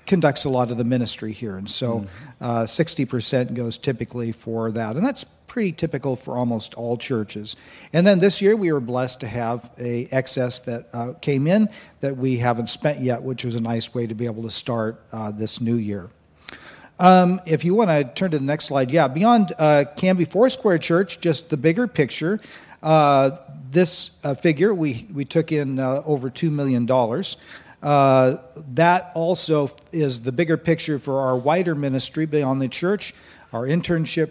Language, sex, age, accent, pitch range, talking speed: English, male, 50-69, American, 120-155 Hz, 185 wpm